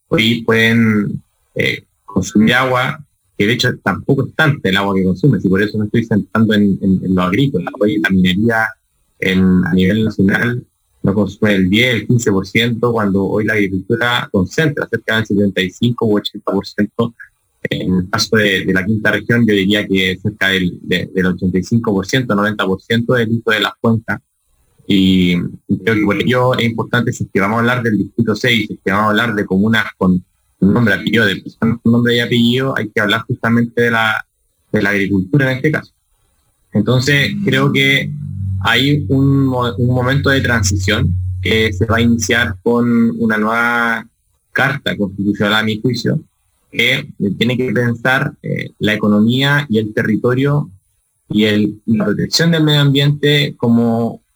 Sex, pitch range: male, 100-120 Hz